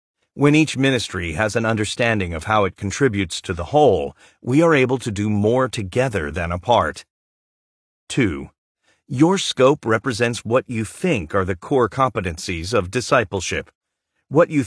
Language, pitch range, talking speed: English, 95-140 Hz, 150 wpm